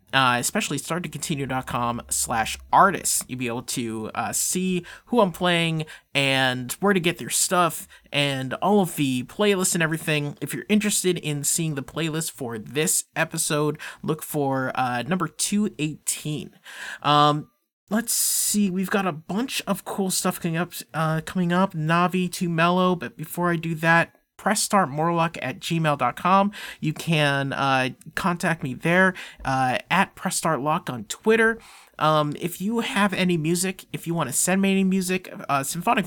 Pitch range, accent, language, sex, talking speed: 145-185 Hz, American, English, male, 160 wpm